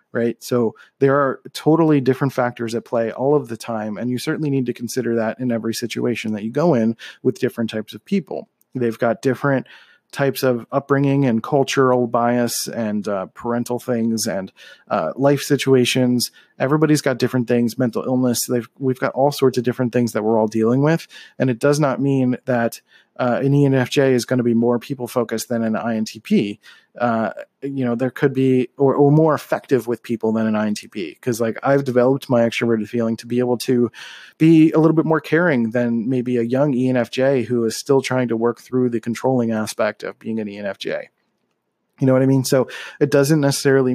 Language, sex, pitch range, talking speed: English, male, 115-135 Hz, 200 wpm